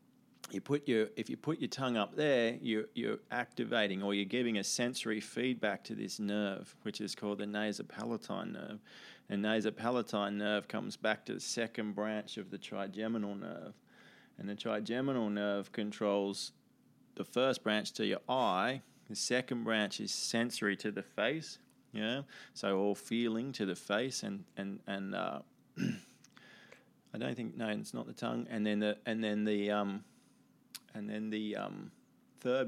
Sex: male